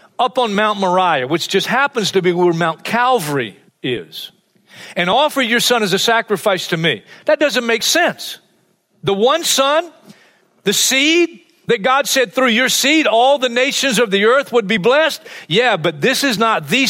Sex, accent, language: male, American, English